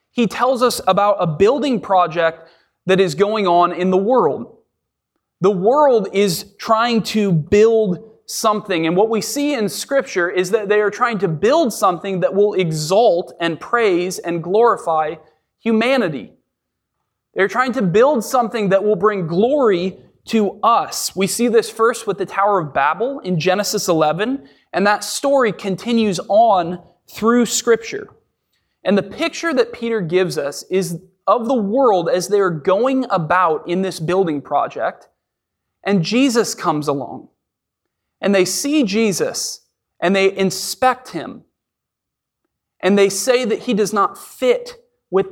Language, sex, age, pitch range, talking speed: English, male, 20-39, 180-225 Hz, 150 wpm